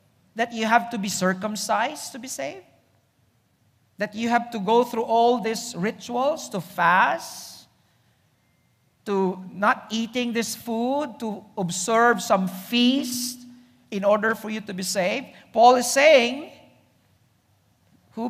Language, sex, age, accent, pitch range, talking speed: English, male, 50-69, Filipino, 185-240 Hz, 130 wpm